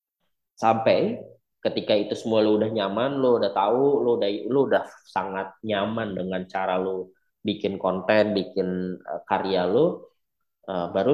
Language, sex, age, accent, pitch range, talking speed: Indonesian, male, 20-39, native, 100-125 Hz, 135 wpm